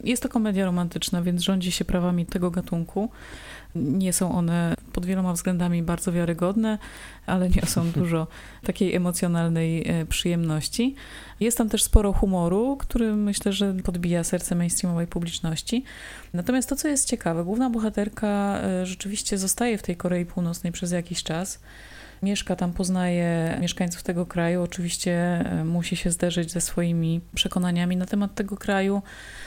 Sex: female